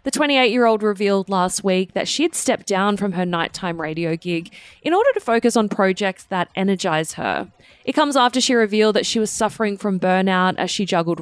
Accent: Australian